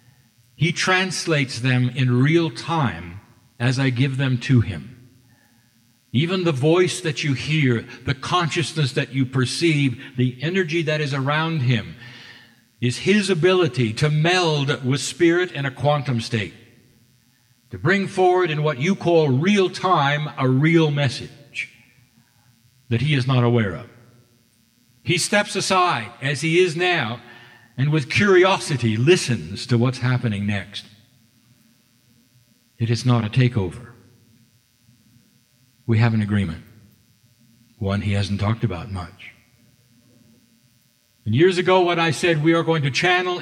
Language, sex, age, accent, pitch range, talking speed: English, male, 60-79, American, 115-150 Hz, 135 wpm